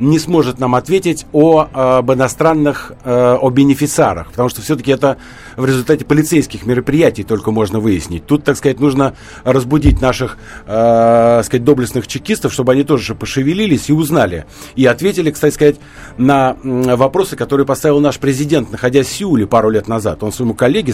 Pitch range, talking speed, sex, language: 115-145 Hz, 160 wpm, male, Russian